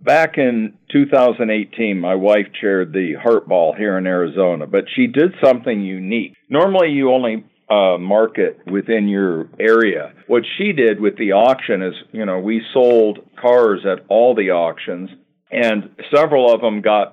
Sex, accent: male, American